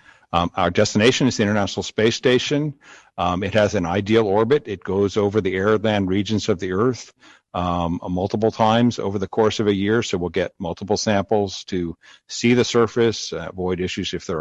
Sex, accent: male, American